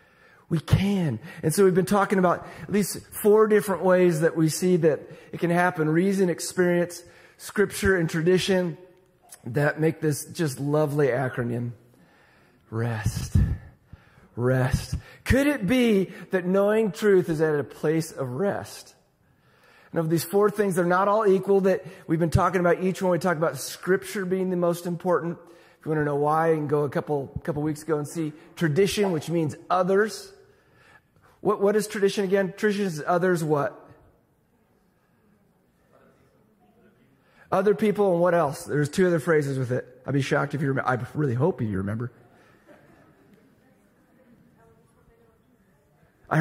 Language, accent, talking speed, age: English, American, 155 wpm, 30-49